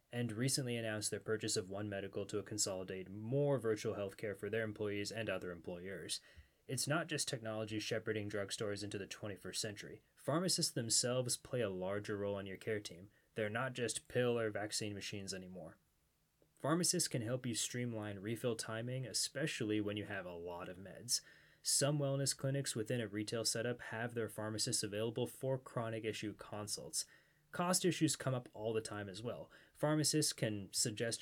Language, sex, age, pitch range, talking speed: English, male, 20-39, 105-130 Hz, 175 wpm